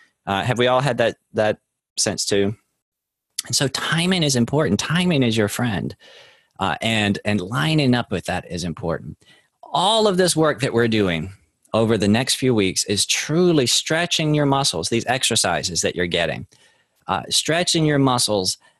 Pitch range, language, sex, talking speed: 110-155 Hz, English, male, 170 wpm